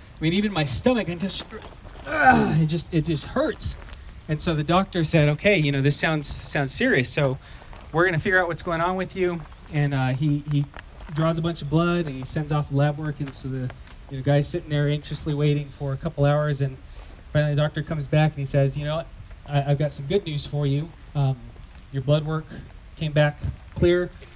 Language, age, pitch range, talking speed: English, 30-49, 135-165 Hz, 225 wpm